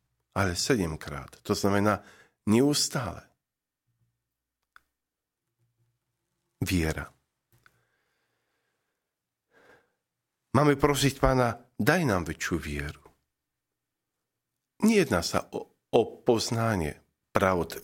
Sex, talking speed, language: male, 65 wpm, Slovak